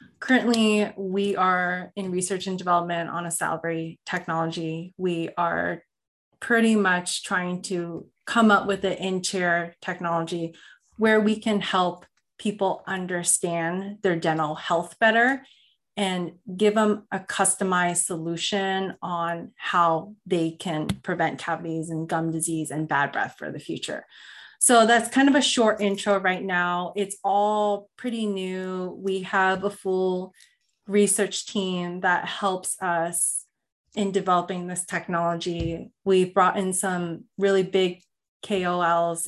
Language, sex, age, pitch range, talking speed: English, female, 30-49, 170-195 Hz, 135 wpm